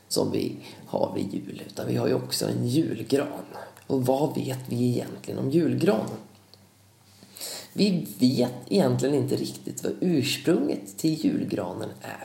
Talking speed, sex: 140 wpm, male